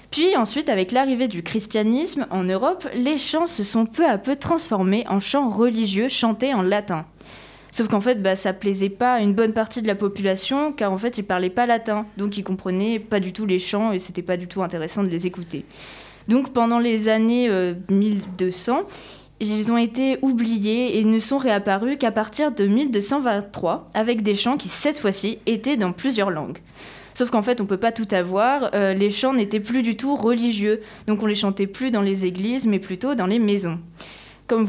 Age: 20-39